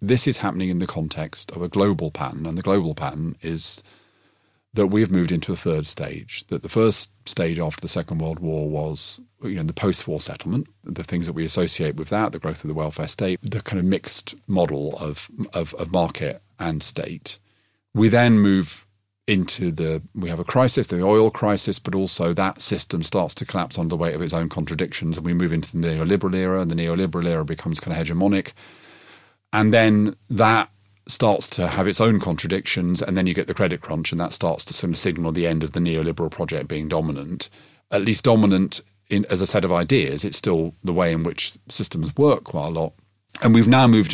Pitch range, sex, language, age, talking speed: 85-105 Hz, male, English, 40-59, 210 wpm